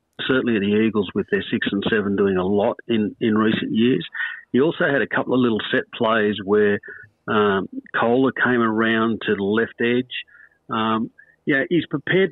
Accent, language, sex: Australian, English, male